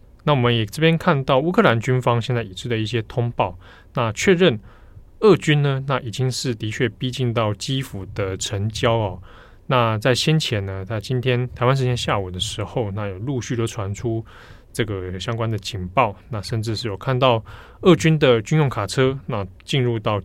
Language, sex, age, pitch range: Chinese, male, 20-39, 105-135 Hz